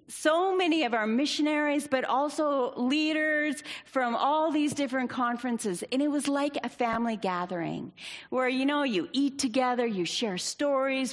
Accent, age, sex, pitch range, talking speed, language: American, 40-59, female, 205-260 Hz, 155 wpm, English